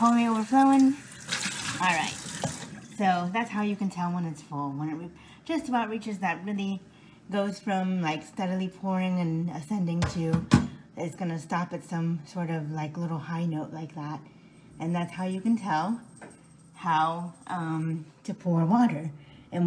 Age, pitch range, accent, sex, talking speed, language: 30-49, 160-200 Hz, American, female, 165 wpm, English